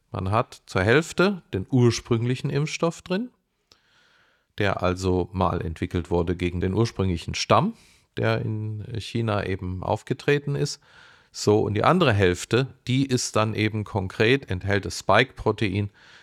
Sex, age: male, 40-59